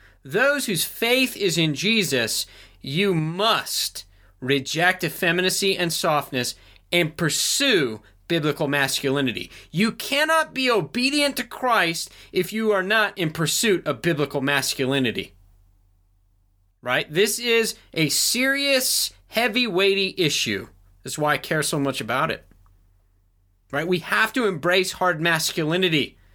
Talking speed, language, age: 125 wpm, English, 30-49